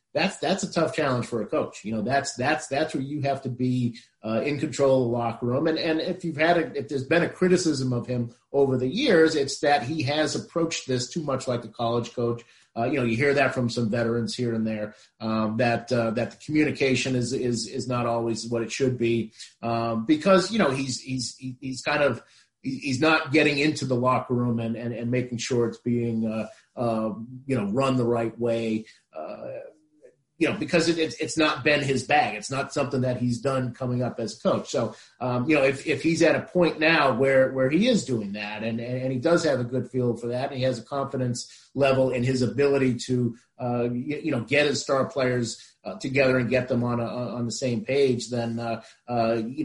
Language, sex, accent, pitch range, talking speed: English, male, American, 120-145 Hz, 230 wpm